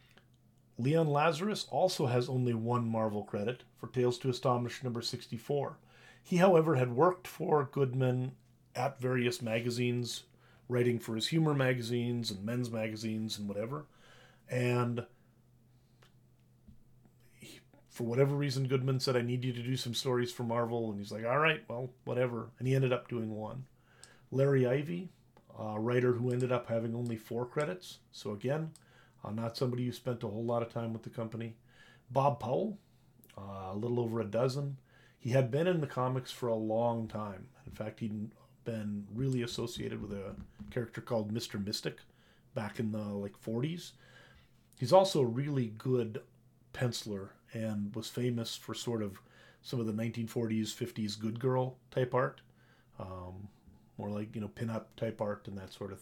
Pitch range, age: 115-130 Hz, 40-59